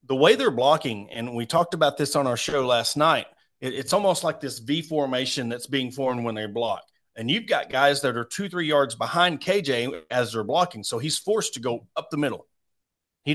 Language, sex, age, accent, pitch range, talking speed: English, male, 40-59, American, 120-150 Hz, 220 wpm